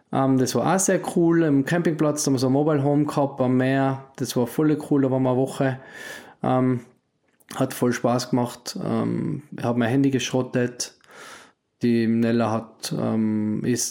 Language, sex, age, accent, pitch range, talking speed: German, male, 20-39, German, 120-140 Hz, 185 wpm